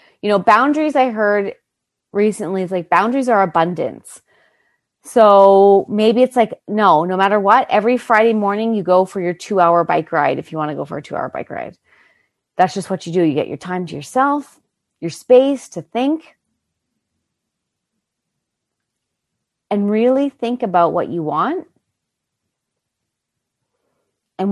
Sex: female